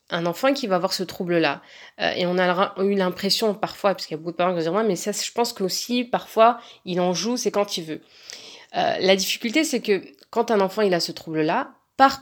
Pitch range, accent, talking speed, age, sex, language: 170-210 Hz, French, 255 wpm, 30-49, female, French